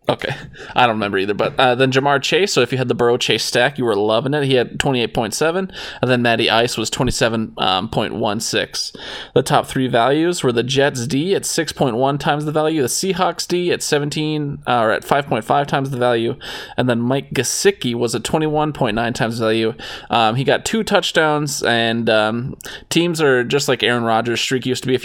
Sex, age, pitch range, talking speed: male, 20-39, 120-150 Hz, 200 wpm